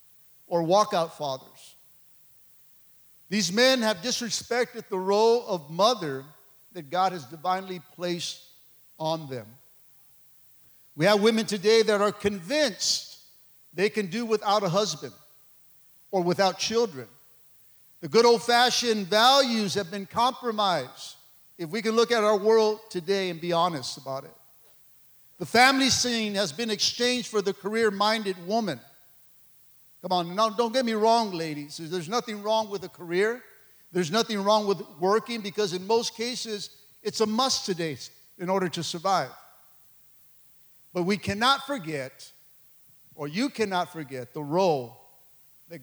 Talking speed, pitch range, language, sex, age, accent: 135 wpm, 160-230 Hz, English, male, 50-69, American